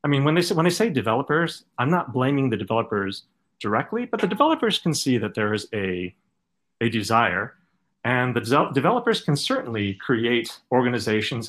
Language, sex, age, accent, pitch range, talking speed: English, male, 40-59, American, 105-140 Hz, 180 wpm